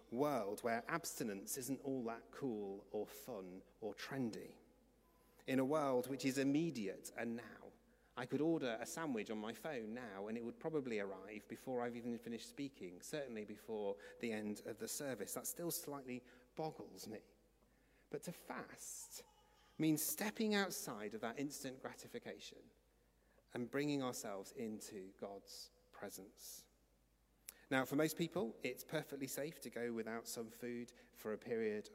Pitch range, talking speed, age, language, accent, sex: 110-140 Hz, 150 wpm, 40-59, English, British, male